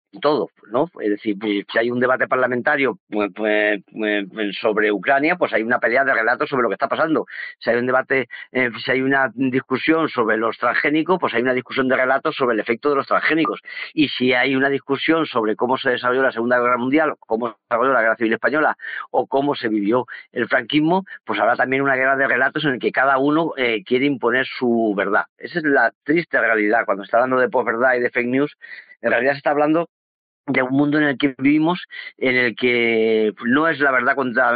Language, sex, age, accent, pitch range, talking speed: Spanish, male, 50-69, Spanish, 115-145 Hz, 215 wpm